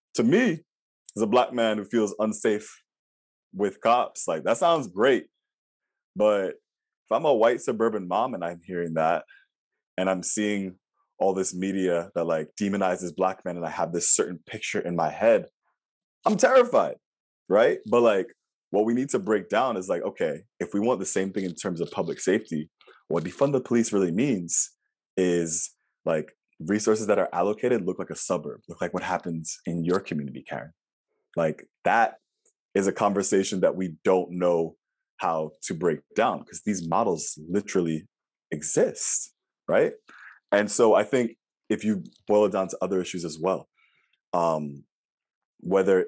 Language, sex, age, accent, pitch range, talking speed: English, male, 20-39, American, 85-140 Hz, 170 wpm